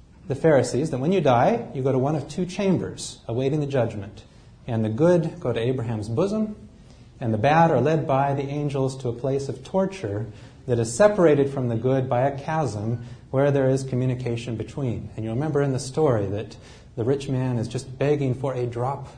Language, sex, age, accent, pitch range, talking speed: English, male, 40-59, American, 120-160 Hz, 205 wpm